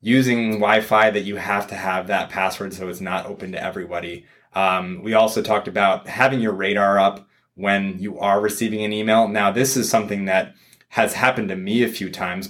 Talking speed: 200 wpm